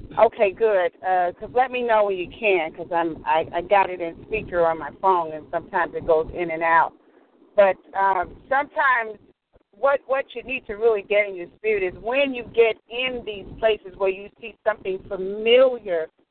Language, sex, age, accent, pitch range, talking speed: English, female, 40-59, American, 190-245 Hz, 190 wpm